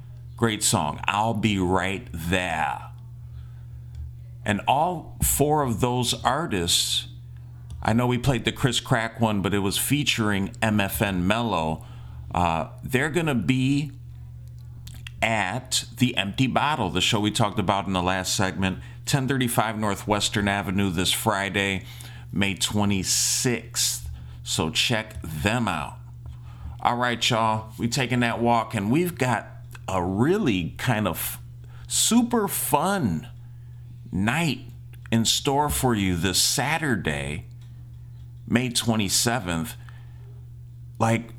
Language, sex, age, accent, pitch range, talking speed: English, male, 40-59, American, 95-125 Hz, 115 wpm